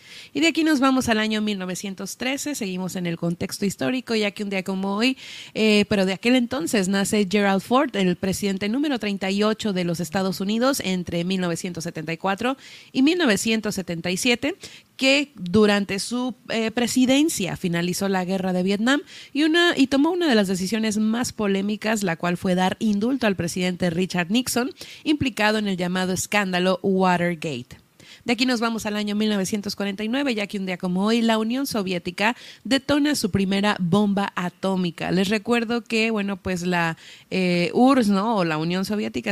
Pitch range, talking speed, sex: 185-235 Hz, 165 wpm, female